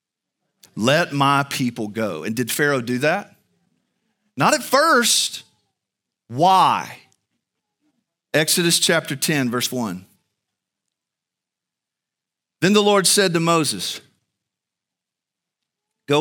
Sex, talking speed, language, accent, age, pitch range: male, 95 wpm, English, American, 50-69, 125-195 Hz